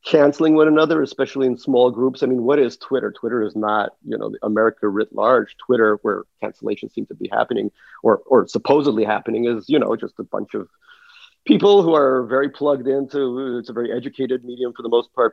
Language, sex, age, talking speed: English, male, 40-59, 210 wpm